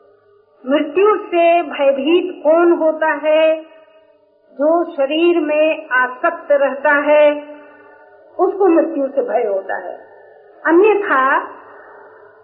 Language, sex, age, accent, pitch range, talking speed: Hindi, female, 50-69, native, 290-340 Hz, 90 wpm